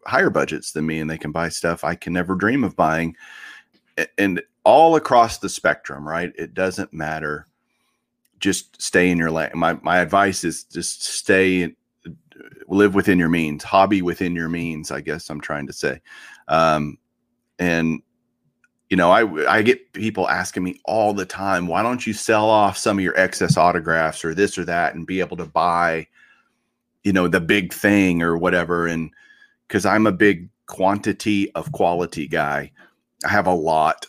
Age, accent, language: 40-59, American, English